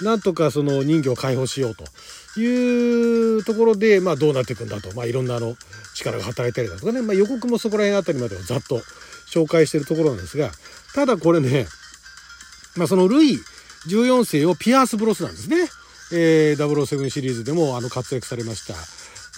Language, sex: Japanese, male